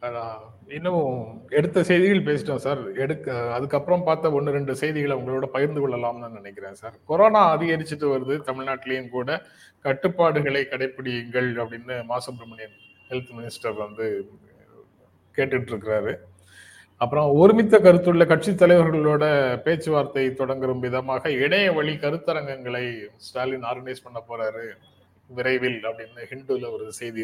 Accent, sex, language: native, male, Tamil